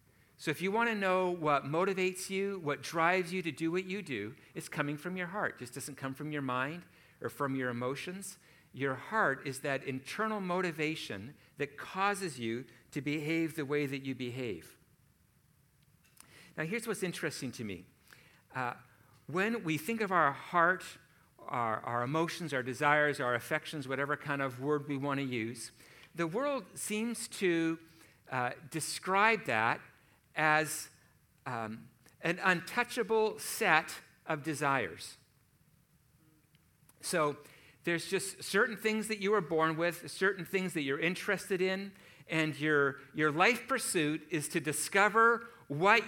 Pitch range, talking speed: 140-190 Hz, 150 wpm